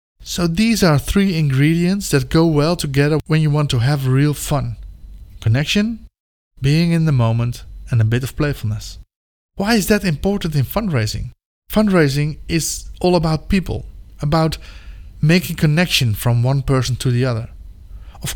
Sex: male